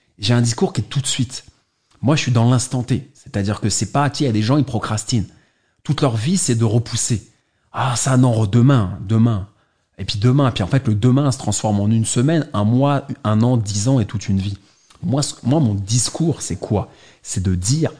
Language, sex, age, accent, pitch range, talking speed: English, male, 30-49, French, 105-130 Hz, 245 wpm